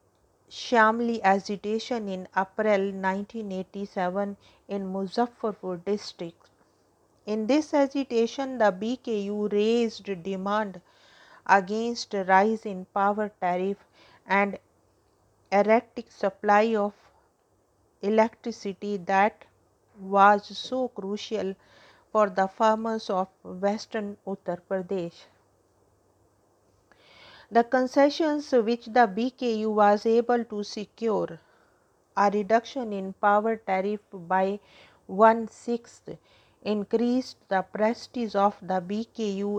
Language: English